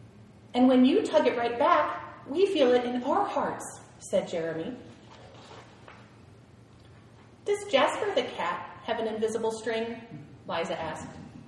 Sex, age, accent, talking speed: female, 30-49, American, 130 wpm